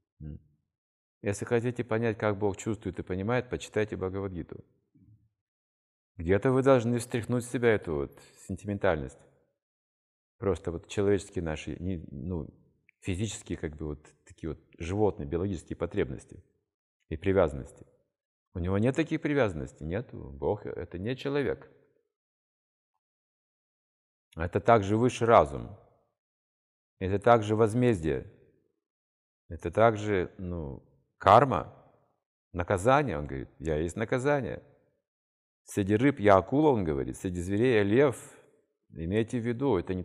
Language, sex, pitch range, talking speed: Russian, male, 85-125 Hz, 115 wpm